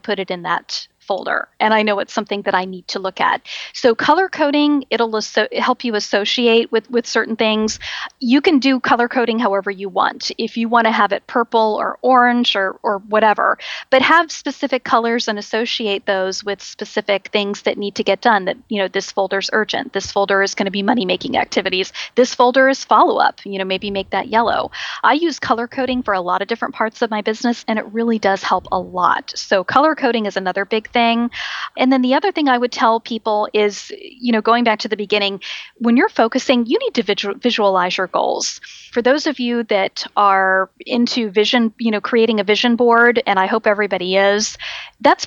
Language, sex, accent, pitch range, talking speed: English, female, American, 200-245 Hz, 210 wpm